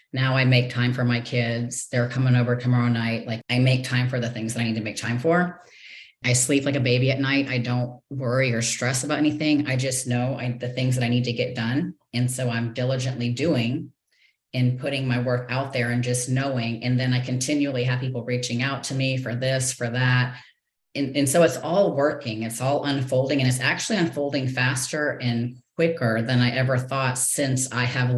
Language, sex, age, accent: English, female, 30-49, American